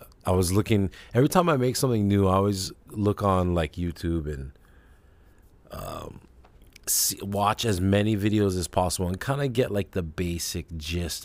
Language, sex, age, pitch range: English, male, 30-49, 80-100 Hz